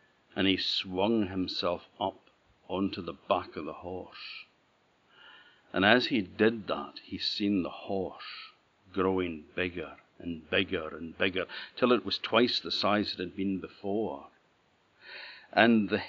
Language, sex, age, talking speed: English, male, 60-79, 140 wpm